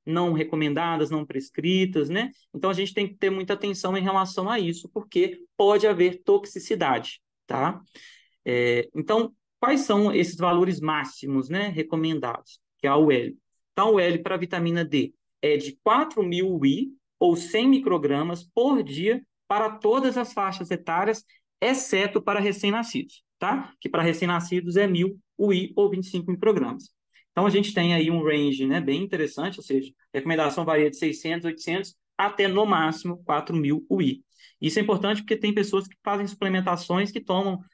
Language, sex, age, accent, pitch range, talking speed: Portuguese, male, 20-39, Brazilian, 160-205 Hz, 160 wpm